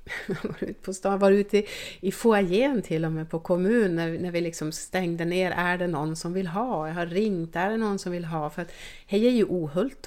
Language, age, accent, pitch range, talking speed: English, 30-49, Swedish, 160-195 Hz, 225 wpm